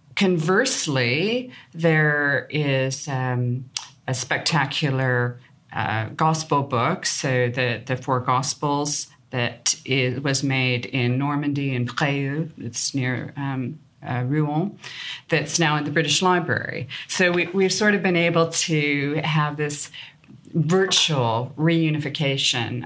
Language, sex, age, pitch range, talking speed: English, female, 40-59, 125-150 Hz, 115 wpm